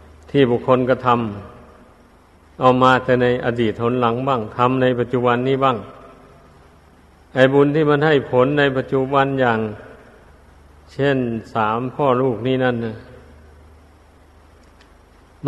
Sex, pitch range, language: male, 115-140 Hz, Thai